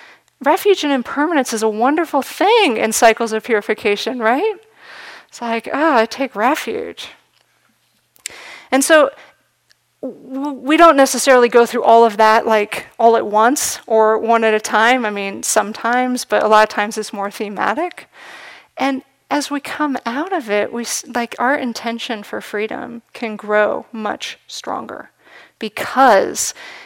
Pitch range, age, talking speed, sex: 220-270 Hz, 40-59, 150 wpm, female